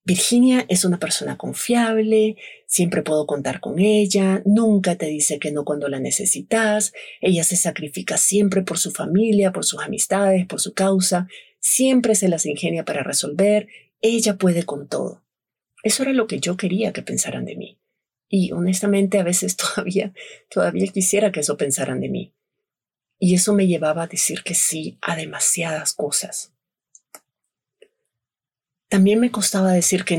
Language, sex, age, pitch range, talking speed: Spanish, female, 40-59, 170-205 Hz, 155 wpm